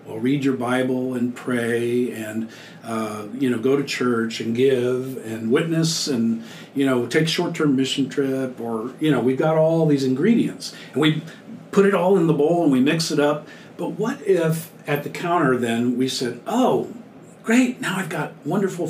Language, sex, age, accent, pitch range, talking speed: English, male, 50-69, American, 125-170 Hz, 190 wpm